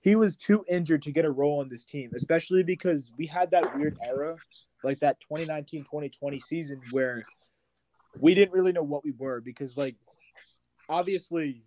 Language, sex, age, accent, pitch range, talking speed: English, male, 20-39, American, 130-160 Hz, 170 wpm